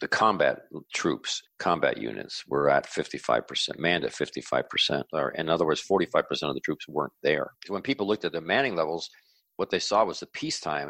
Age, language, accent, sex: 50-69, English, American, male